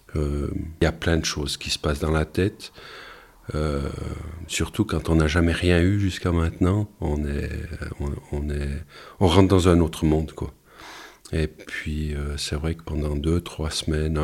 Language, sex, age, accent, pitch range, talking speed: French, male, 40-59, French, 80-95 Hz, 190 wpm